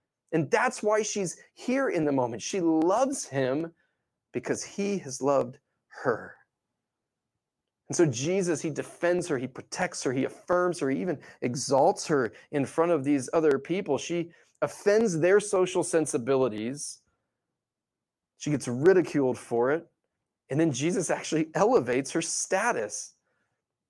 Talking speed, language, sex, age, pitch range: 140 wpm, English, male, 30-49, 125-175 Hz